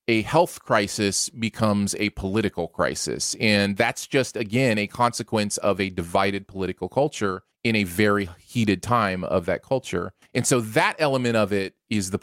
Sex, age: male, 30-49